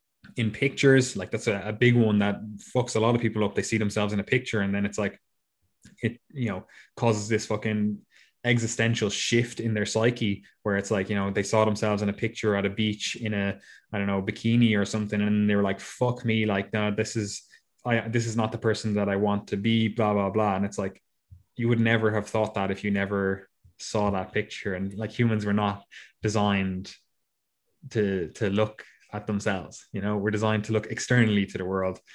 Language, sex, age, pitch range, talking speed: English, male, 20-39, 100-115 Hz, 220 wpm